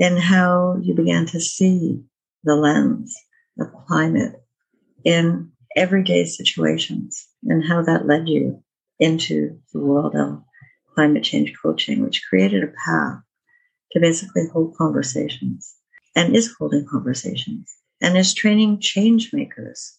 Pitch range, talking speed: 125-185 Hz, 125 wpm